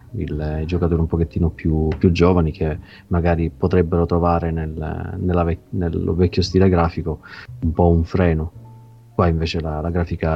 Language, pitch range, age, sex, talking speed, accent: Italian, 85-105 Hz, 30-49, male, 155 wpm, native